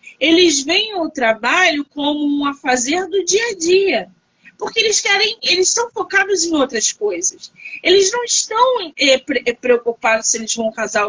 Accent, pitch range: Brazilian, 230-340 Hz